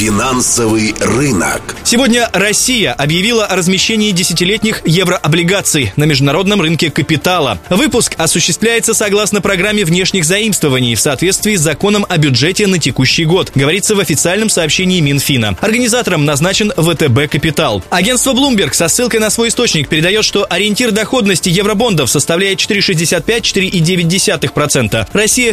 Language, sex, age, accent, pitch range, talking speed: Russian, male, 20-39, native, 150-210 Hz, 120 wpm